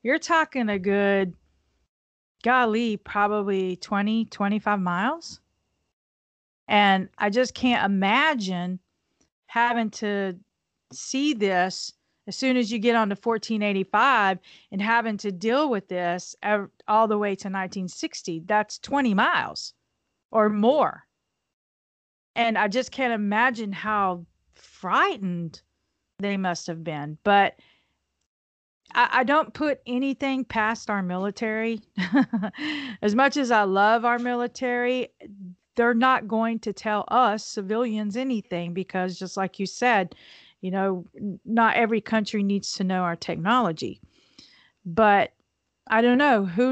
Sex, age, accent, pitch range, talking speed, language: female, 40-59, American, 195-235 Hz, 120 wpm, English